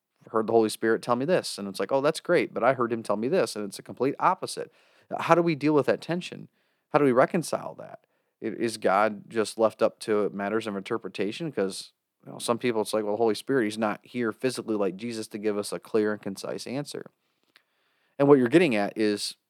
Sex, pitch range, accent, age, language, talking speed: male, 105-145 Hz, American, 30-49, English, 240 wpm